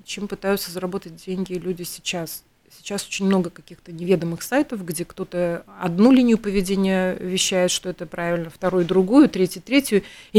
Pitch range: 180-220 Hz